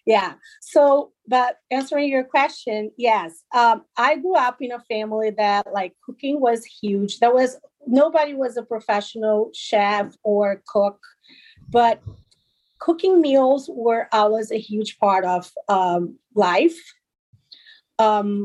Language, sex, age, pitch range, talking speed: English, female, 30-49, 210-270 Hz, 130 wpm